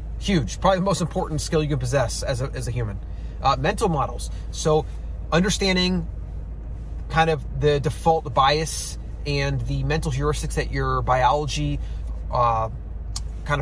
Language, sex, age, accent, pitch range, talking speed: English, male, 30-49, American, 110-160 Hz, 145 wpm